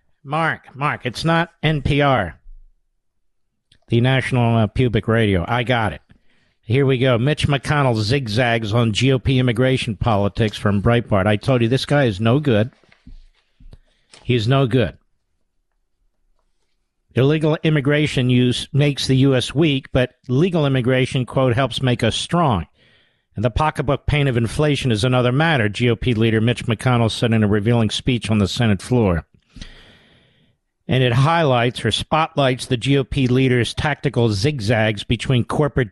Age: 50-69